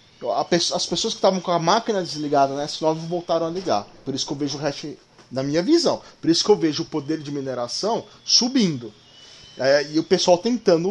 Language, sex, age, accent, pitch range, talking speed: Portuguese, male, 20-39, Brazilian, 145-210 Hz, 215 wpm